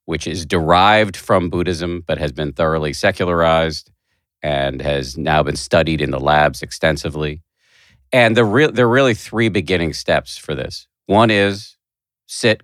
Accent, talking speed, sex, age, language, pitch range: American, 145 wpm, male, 50-69, English, 75-100 Hz